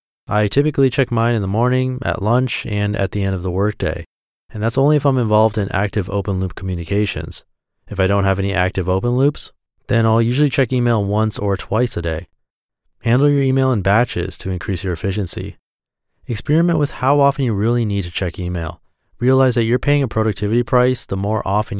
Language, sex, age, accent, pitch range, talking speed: English, male, 30-49, American, 95-125 Hz, 205 wpm